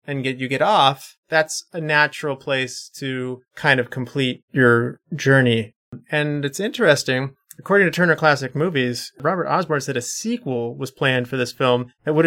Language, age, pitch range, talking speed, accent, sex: English, 30-49, 125-160 Hz, 170 wpm, American, male